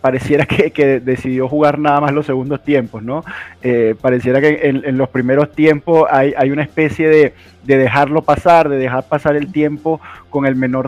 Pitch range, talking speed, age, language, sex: 130-155 Hz, 195 wpm, 20-39, Spanish, male